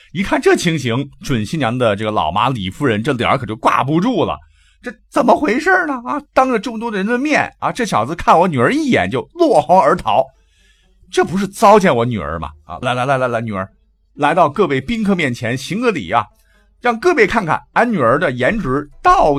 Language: Chinese